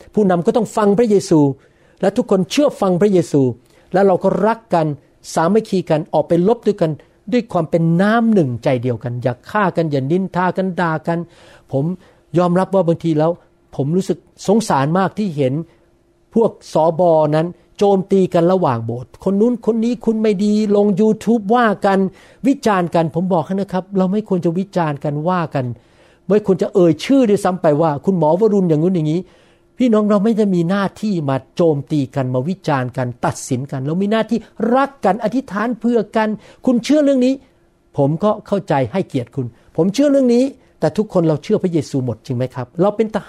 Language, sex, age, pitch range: Thai, male, 60-79, 155-210 Hz